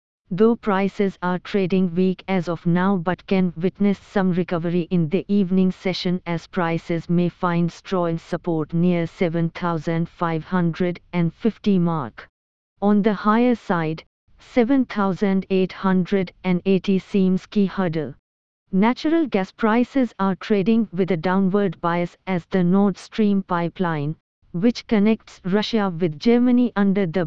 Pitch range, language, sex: 170-200 Hz, English, female